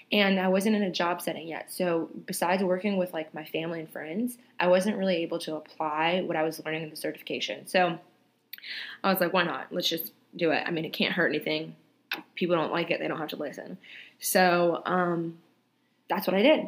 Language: English